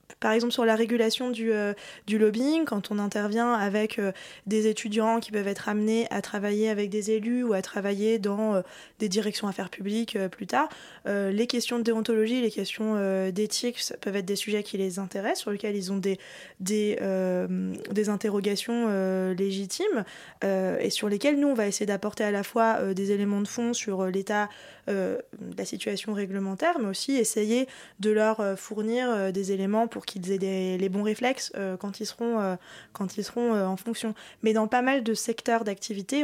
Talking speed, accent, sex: 205 wpm, French, female